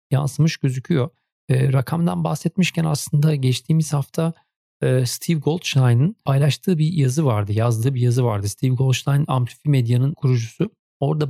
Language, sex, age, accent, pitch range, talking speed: Turkish, male, 40-59, native, 120-145 Hz, 120 wpm